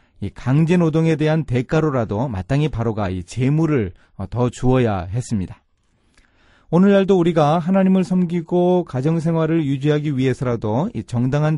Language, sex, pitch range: Korean, male, 105-150 Hz